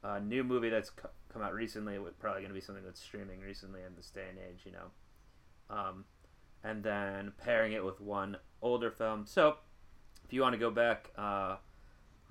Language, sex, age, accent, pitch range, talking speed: English, male, 20-39, American, 95-110 Hz, 190 wpm